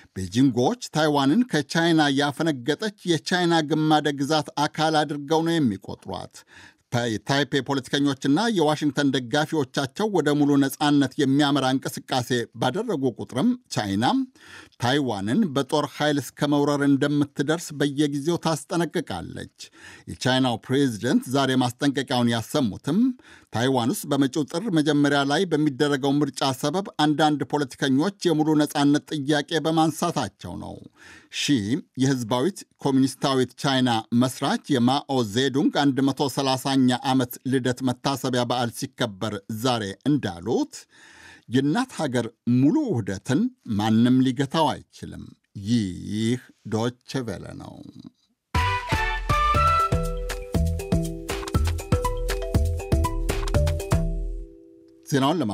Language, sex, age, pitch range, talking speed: Amharic, male, 60-79, 125-155 Hz, 85 wpm